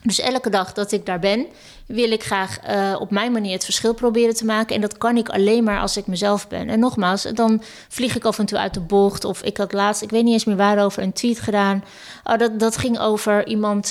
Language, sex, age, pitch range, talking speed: Dutch, female, 20-39, 195-220 Hz, 255 wpm